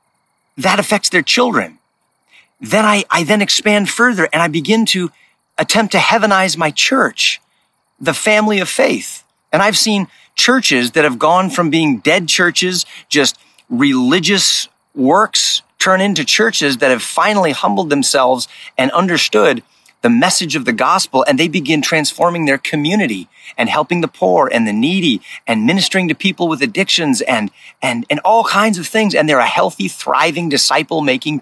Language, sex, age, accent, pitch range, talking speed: English, male, 40-59, American, 155-210 Hz, 160 wpm